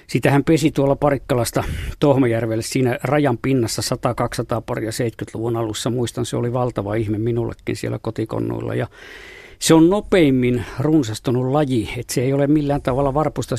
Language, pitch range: Finnish, 115-145 Hz